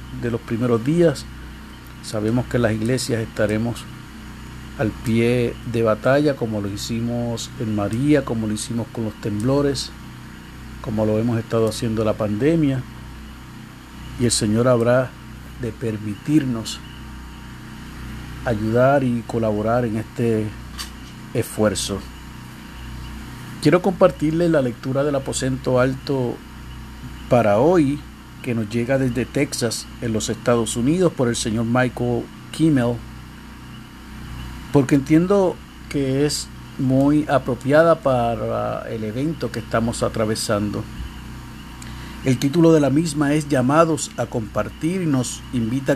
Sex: male